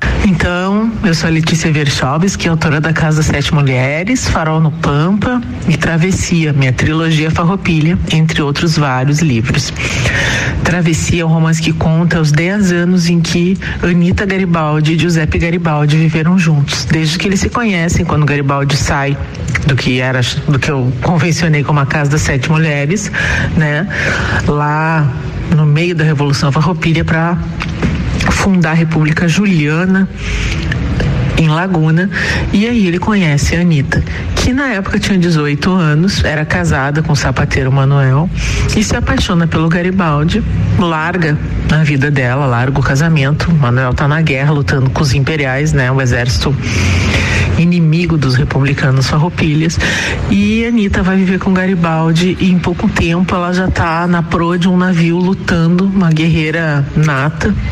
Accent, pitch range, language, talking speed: Brazilian, 145-170 Hz, Portuguese, 155 wpm